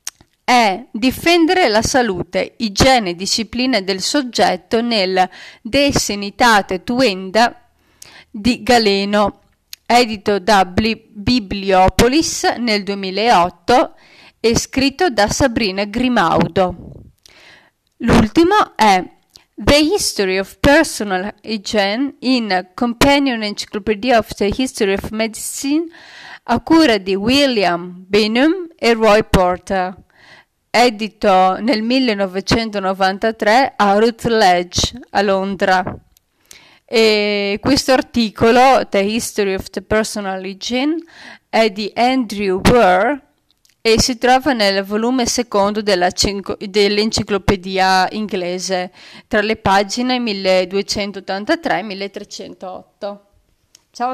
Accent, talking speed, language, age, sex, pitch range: native, 95 wpm, Italian, 30-49, female, 195-250 Hz